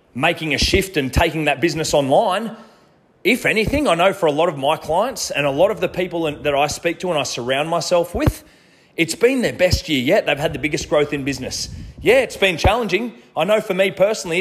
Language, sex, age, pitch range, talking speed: English, male, 30-49, 125-165 Hz, 230 wpm